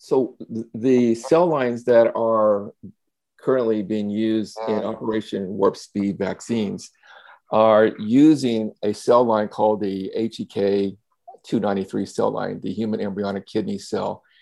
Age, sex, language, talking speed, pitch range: 50-69, male, English, 120 wpm, 100-115 Hz